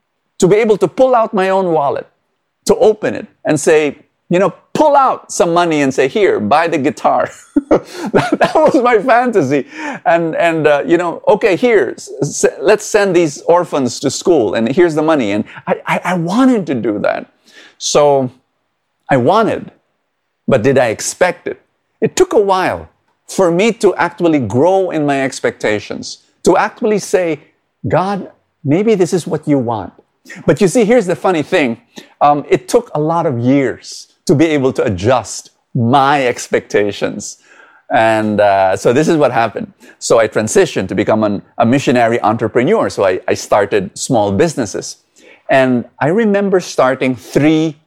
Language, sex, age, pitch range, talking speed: English, male, 50-69, 140-205 Hz, 165 wpm